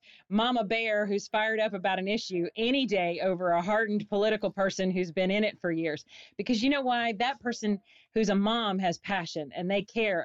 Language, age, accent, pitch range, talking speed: English, 40-59, American, 175-215 Hz, 205 wpm